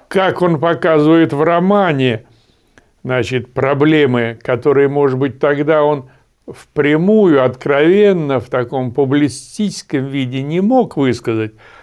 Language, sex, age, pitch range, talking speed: Russian, male, 60-79, 130-195 Hz, 105 wpm